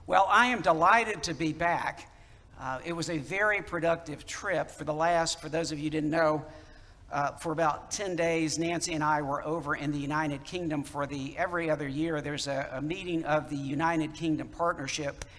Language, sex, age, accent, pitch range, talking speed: English, male, 60-79, American, 140-165 Hz, 200 wpm